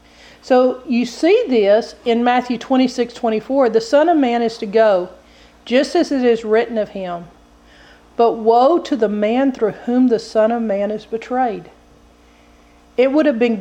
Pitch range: 180-240 Hz